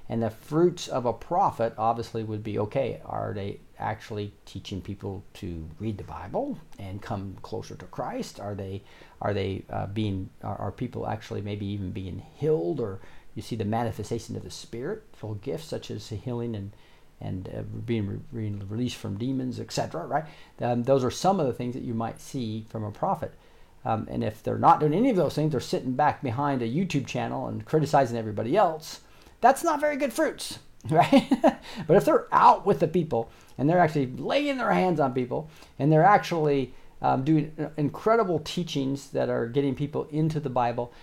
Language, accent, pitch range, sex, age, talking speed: English, American, 105-150 Hz, male, 50-69, 190 wpm